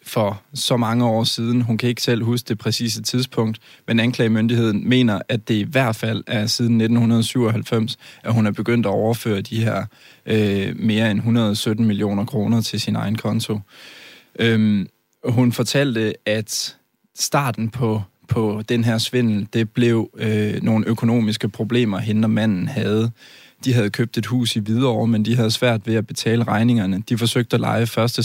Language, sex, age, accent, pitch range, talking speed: Danish, male, 20-39, native, 110-120 Hz, 175 wpm